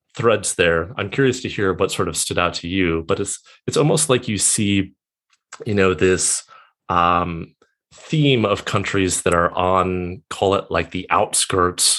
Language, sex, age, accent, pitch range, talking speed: English, male, 30-49, American, 85-105 Hz, 175 wpm